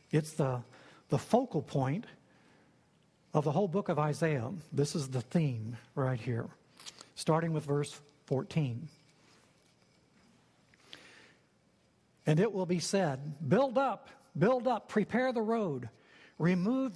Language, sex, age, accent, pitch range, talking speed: English, male, 60-79, American, 145-190 Hz, 120 wpm